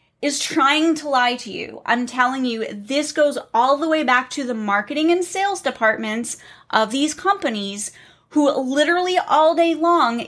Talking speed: 170 wpm